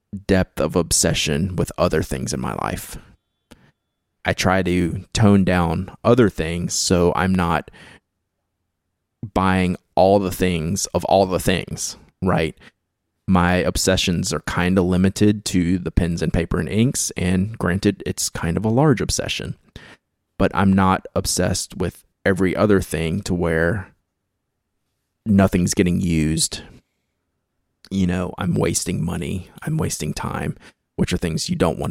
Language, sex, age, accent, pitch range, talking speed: English, male, 20-39, American, 85-100 Hz, 145 wpm